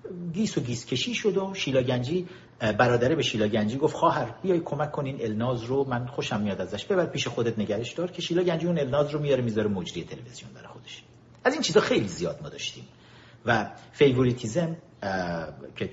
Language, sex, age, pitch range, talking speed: Persian, male, 50-69, 120-180 Hz, 190 wpm